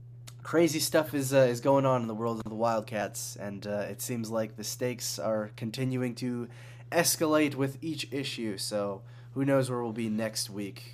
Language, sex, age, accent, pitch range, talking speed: English, male, 20-39, American, 110-130 Hz, 190 wpm